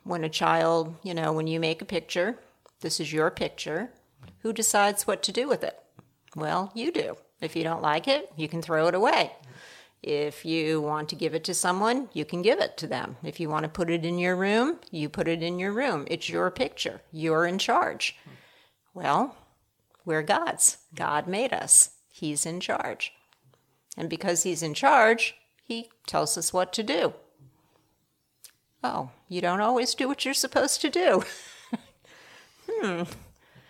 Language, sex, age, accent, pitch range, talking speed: English, female, 50-69, American, 160-225 Hz, 180 wpm